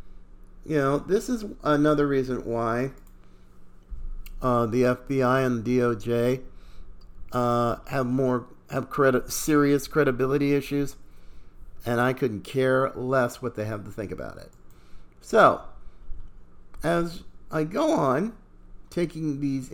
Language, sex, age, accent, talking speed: English, male, 50-69, American, 120 wpm